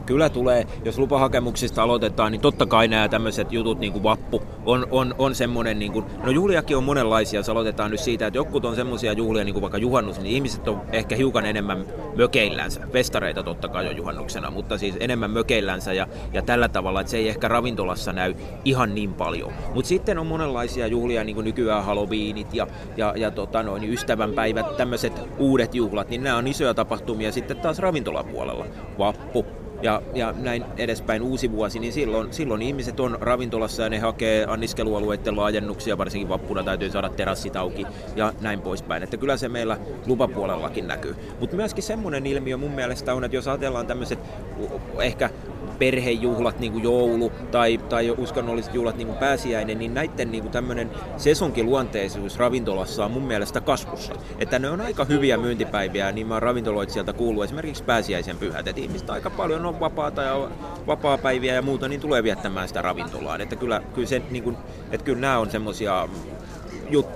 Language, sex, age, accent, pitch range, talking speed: Finnish, male, 30-49, native, 105-130 Hz, 170 wpm